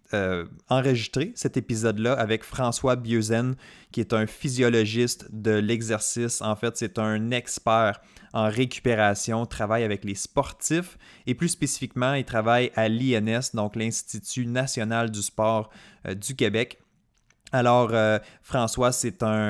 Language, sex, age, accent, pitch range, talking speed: French, male, 20-39, Canadian, 110-125 Hz, 135 wpm